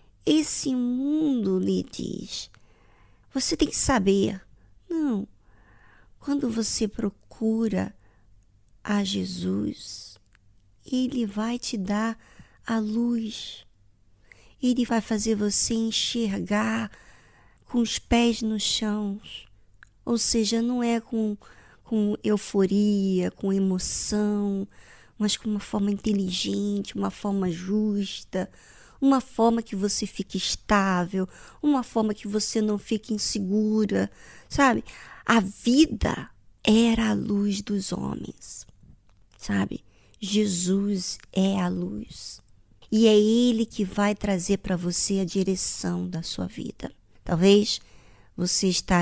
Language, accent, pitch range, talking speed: Portuguese, Brazilian, 175-225 Hz, 110 wpm